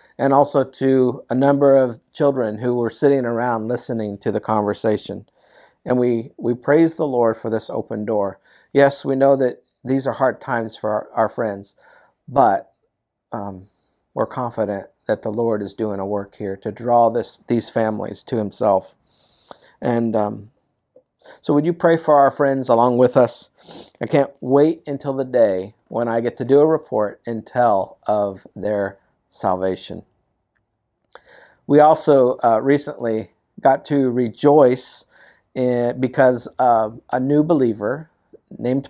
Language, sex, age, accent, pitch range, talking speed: English, male, 50-69, American, 115-140 Hz, 155 wpm